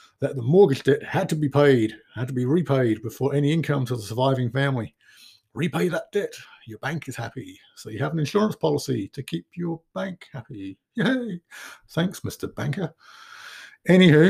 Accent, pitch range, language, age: British, 125-160 Hz, English, 50-69